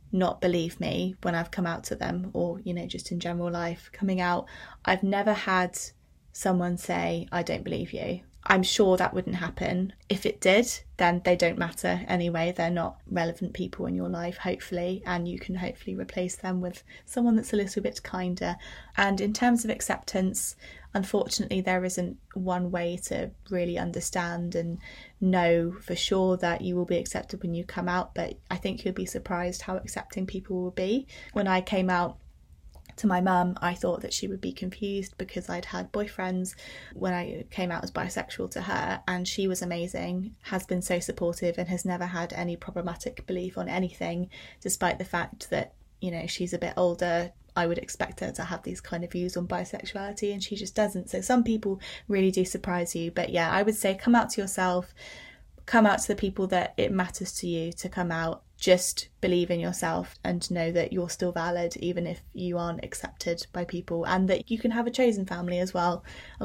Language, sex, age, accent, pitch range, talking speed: English, female, 20-39, British, 175-190 Hz, 200 wpm